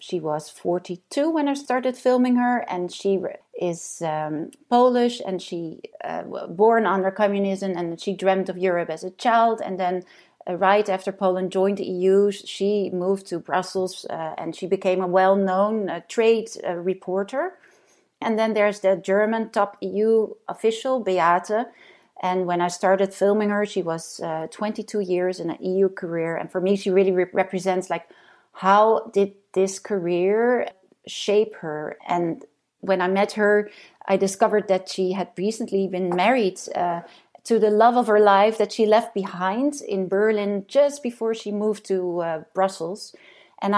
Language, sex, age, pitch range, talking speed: English, female, 30-49, 185-215 Hz, 165 wpm